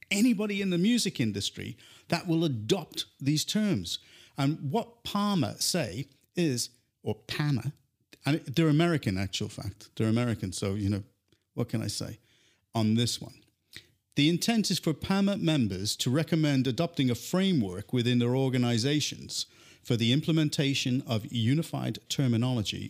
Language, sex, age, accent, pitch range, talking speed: English, male, 50-69, British, 110-150 Hz, 140 wpm